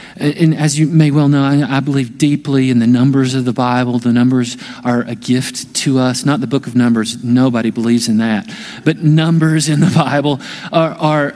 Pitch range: 140-185 Hz